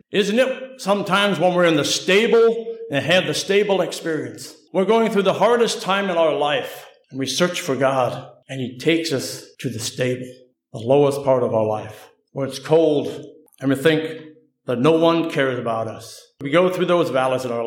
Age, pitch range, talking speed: 60-79, 125-165 Hz, 200 wpm